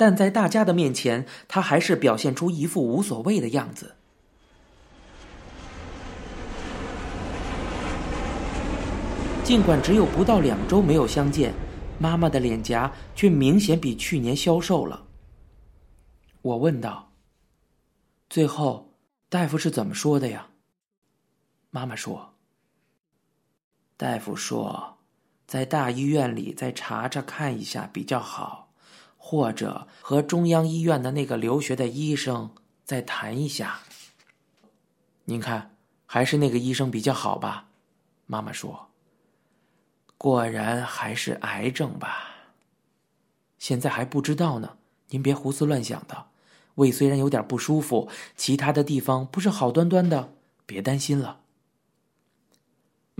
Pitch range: 125-165 Hz